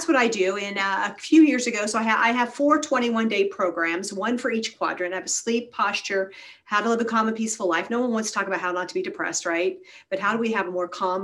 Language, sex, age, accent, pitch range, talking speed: English, female, 40-59, American, 190-250 Hz, 305 wpm